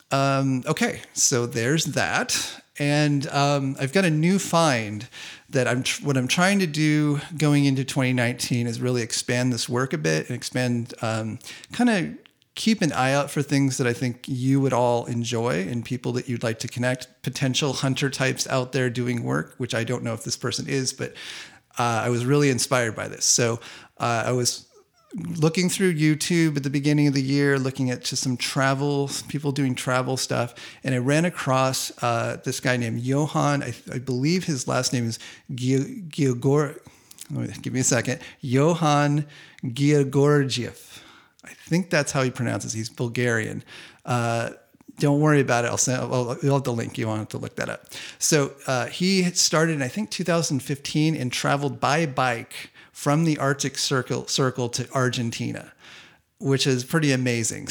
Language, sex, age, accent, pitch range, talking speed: English, male, 40-59, American, 125-145 Hz, 180 wpm